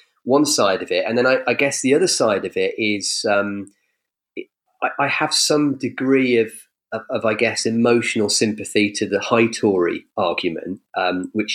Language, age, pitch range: English, 30-49, 110-150 Hz